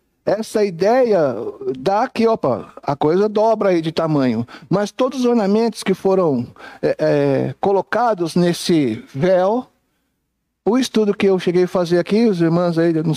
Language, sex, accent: Portuguese, male, Brazilian